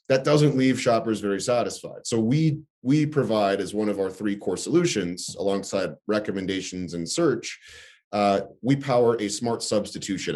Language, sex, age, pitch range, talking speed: English, male, 30-49, 100-120 Hz, 155 wpm